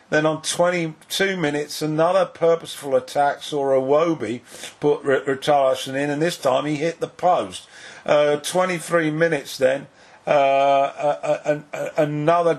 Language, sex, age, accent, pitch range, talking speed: English, male, 50-69, British, 150-180 Hz, 125 wpm